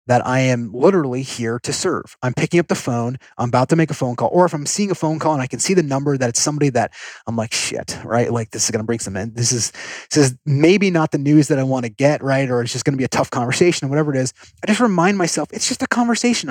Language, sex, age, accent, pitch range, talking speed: English, male, 30-49, American, 125-165 Hz, 295 wpm